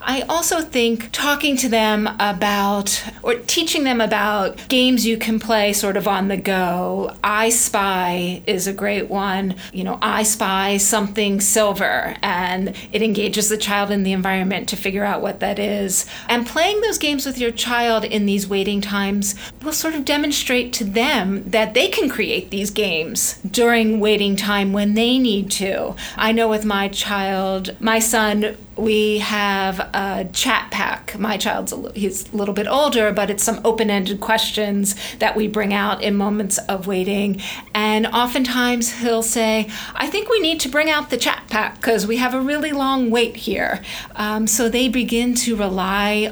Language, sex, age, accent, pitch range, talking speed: English, female, 40-59, American, 200-235 Hz, 175 wpm